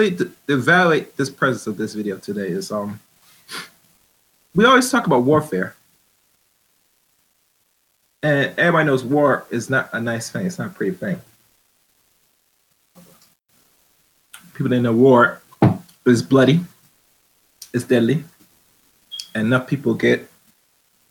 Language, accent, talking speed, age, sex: English, American, 115 wpm, 30-49, male